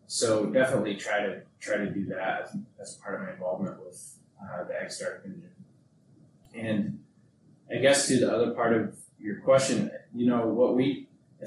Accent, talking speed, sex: American, 185 wpm, male